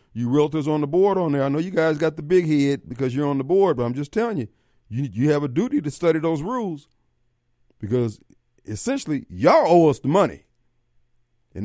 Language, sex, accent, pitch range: Japanese, male, American, 110-145 Hz